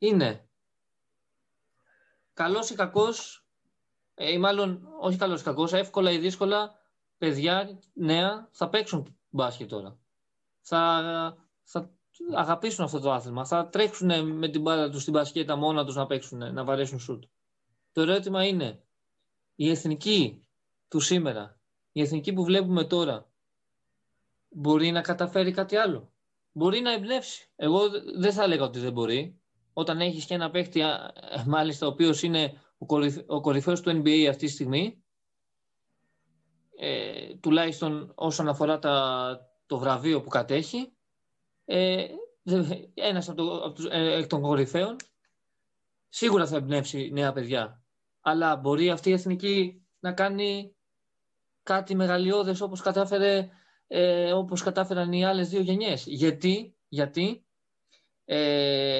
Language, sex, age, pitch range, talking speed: Greek, male, 20-39, 145-190 Hz, 130 wpm